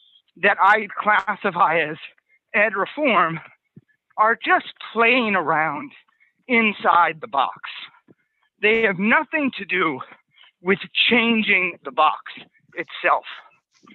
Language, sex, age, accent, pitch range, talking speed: English, male, 50-69, American, 200-270 Hz, 100 wpm